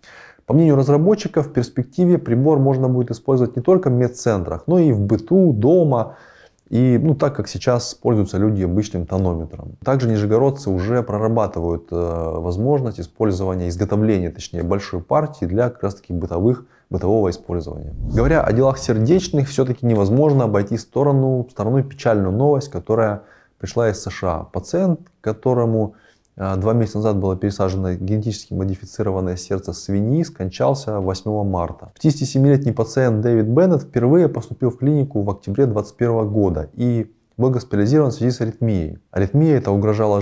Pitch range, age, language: 100-135 Hz, 20-39, Russian